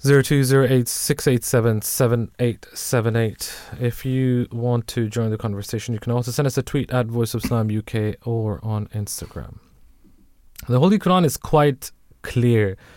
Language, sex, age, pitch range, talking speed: English, male, 20-39, 110-130 Hz, 170 wpm